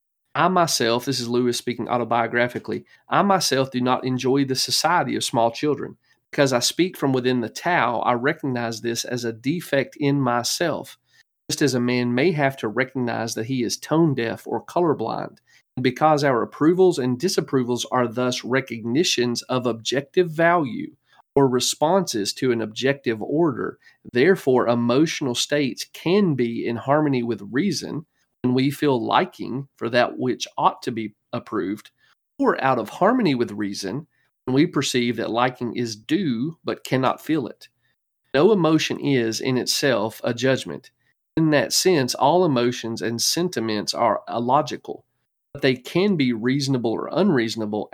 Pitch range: 120-145 Hz